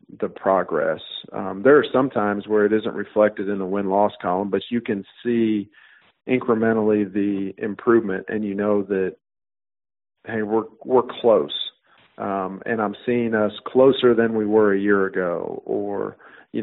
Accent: American